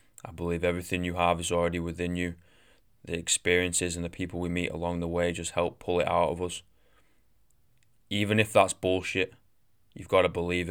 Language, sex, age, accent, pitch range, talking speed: English, male, 20-39, British, 85-95 Hz, 190 wpm